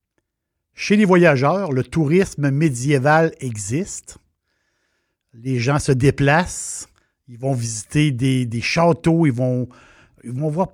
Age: 60-79